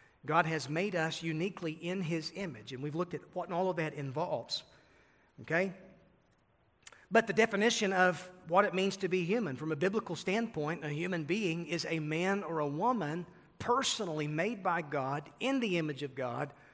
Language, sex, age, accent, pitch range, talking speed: English, male, 40-59, American, 155-195 Hz, 180 wpm